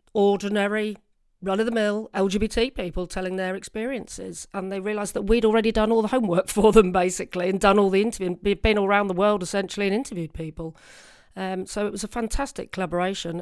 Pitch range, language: 185-215 Hz, English